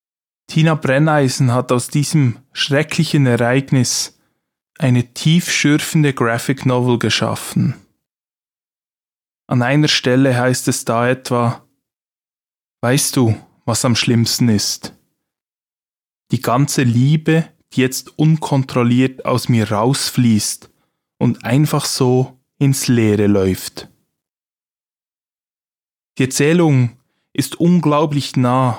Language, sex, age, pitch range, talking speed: German, male, 20-39, 125-145 Hz, 95 wpm